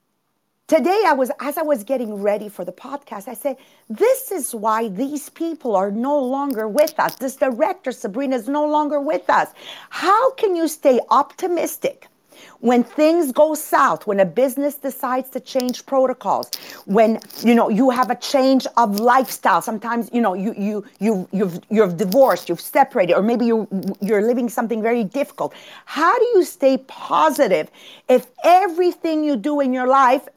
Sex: female